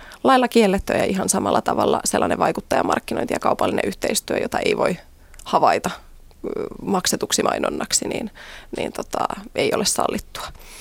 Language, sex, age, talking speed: Finnish, female, 20-39, 120 wpm